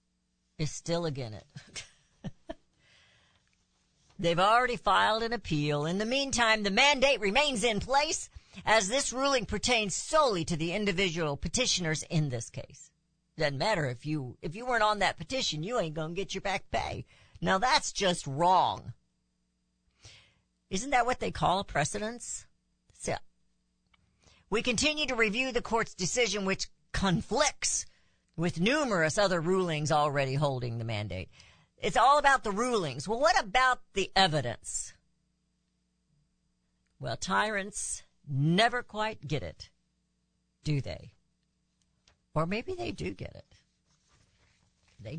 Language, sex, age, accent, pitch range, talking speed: English, female, 50-69, American, 145-230 Hz, 135 wpm